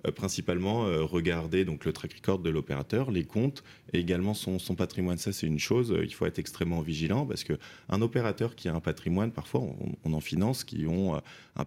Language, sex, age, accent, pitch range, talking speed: French, male, 30-49, French, 80-100 Hz, 200 wpm